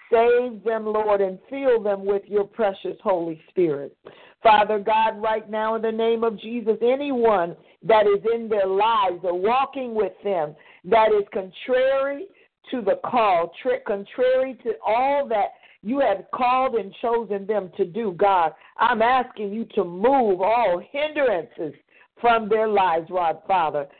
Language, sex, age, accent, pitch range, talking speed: English, female, 50-69, American, 190-245 Hz, 155 wpm